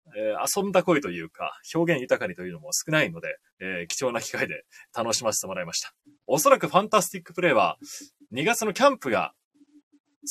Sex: male